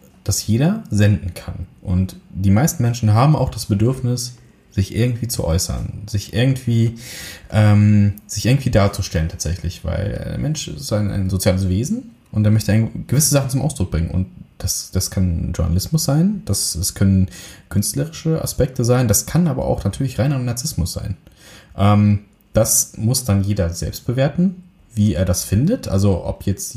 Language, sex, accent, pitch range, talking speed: German, male, German, 95-115 Hz, 160 wpm